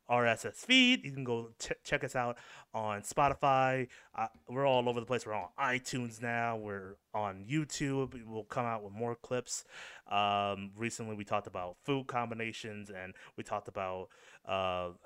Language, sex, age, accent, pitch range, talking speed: English, male, 30-49, American, 105-135 Hz, 165 wpm